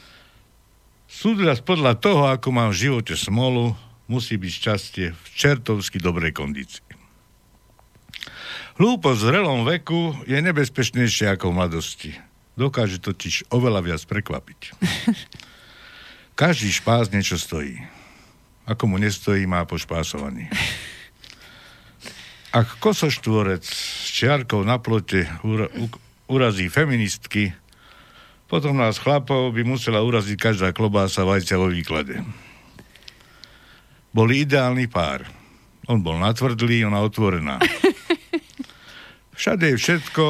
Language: Slovak